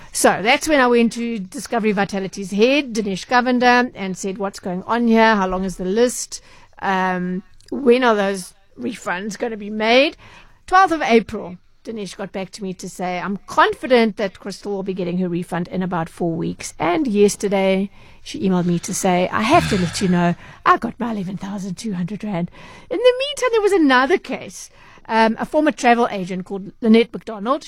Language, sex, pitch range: English, female, 190-235 Hz